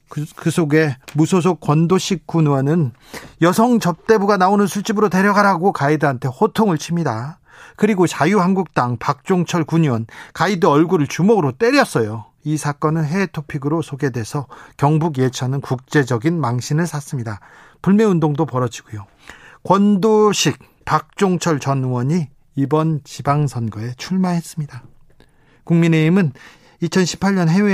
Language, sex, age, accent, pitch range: Korean, male, 40-59, native, 140-190 Hz